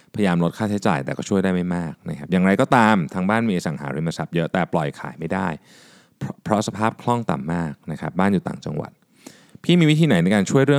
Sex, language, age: male, Thai, 20-39